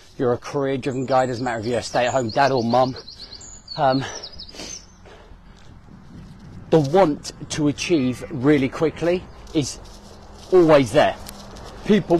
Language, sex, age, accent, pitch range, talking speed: English, male, 40-59, British, 120-150 Hz, 115 wpm